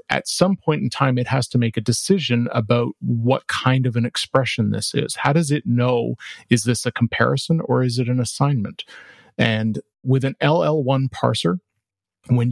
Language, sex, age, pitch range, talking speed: English, male, 40-59, 120-140 Hz, 180 wpm